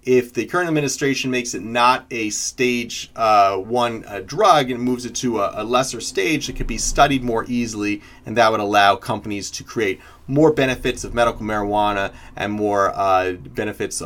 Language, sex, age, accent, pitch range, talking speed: English, male, 30-49, American, 115-145 Hz, 185 wpm